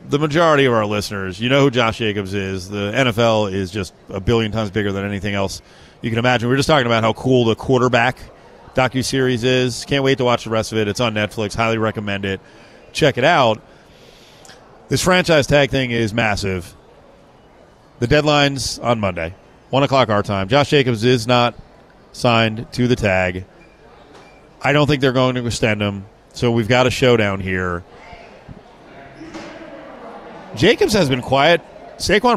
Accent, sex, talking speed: American, male, 175 wpm